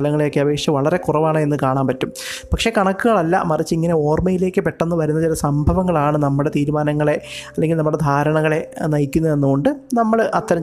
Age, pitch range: 20-39, 145-175 Hz